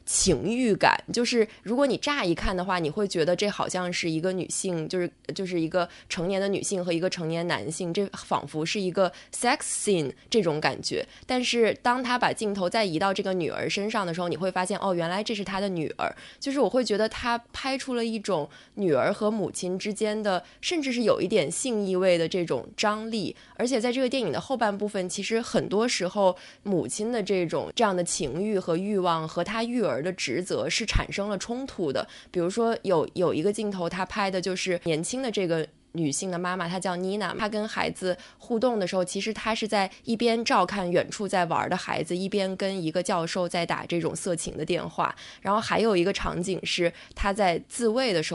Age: 20-39